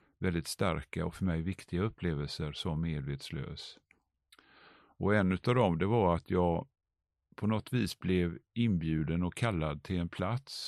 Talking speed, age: 150 wpm, 50-69